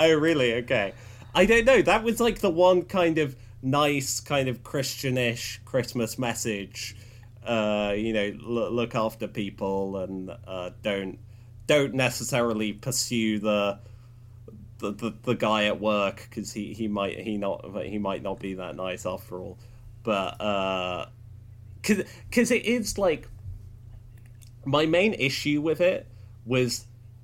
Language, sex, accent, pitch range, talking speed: English, male, British, 110-130 Hz, 145 wpm